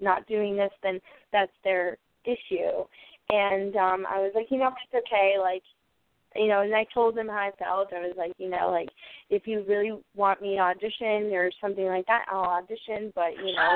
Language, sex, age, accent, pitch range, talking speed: English, female, 20-39, American, 190-225 Hz, 210 wpm